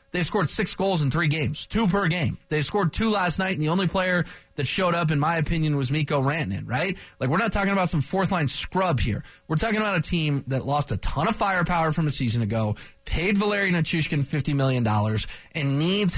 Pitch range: 140-205 Hz